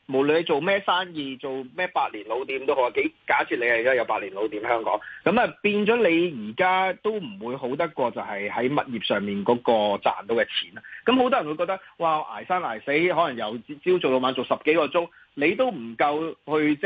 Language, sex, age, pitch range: Chinese, male, 30-49, 125-180 Hz